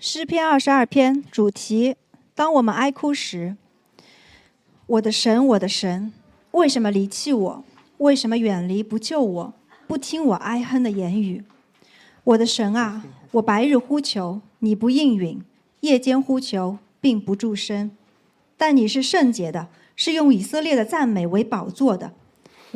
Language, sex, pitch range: Chinese, female, 205-270 Hz